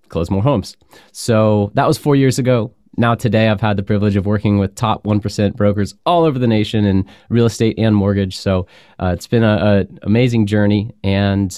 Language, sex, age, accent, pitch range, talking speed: English, male, 20-39, American, 100-120 Hz, 195 wpm